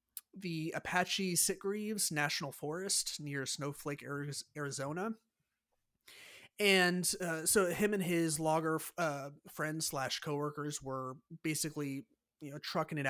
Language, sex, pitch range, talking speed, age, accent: English, male, 140-175 Hz, 115 wpm, 30-49, American